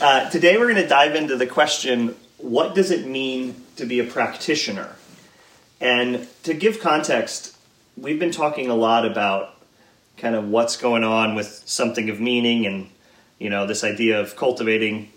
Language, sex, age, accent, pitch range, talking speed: English, male, 30-49, American, 110-125 Hz, 170 wpm